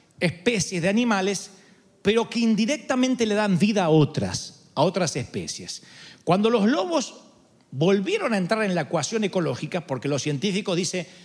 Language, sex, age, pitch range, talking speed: Spanish, male, 40-59, 180-225 Hz, 150 wpm